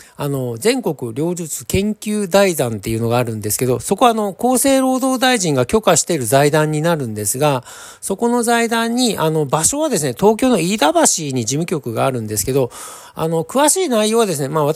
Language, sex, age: Japanese, male, 40-59